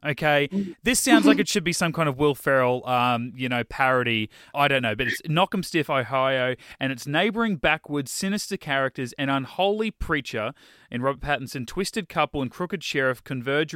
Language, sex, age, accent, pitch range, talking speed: English, male, 30-49, Australian, 125-160 Hz, 190 wpm